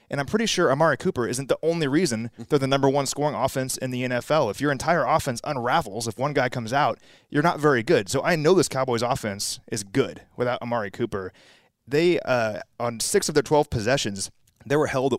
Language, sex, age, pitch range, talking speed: English, male, 30-49, 110-135 Hz, 215 wpm